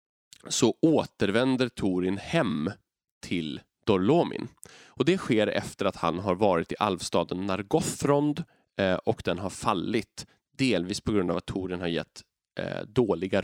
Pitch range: 90-130 Hz